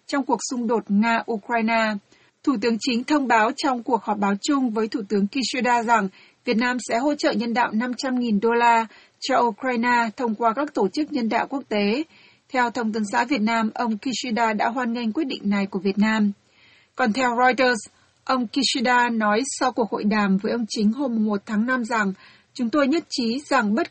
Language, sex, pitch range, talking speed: Vietnamese, female, 220-260 Hz, 210 wpm